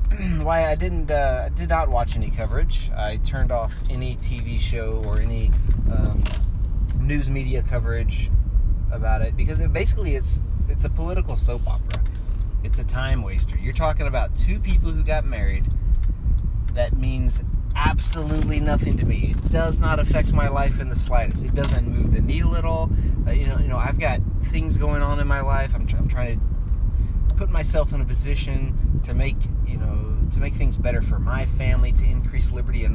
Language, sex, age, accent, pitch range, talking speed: English, male, 20-39, American, 80-100 Hz, 190 wpm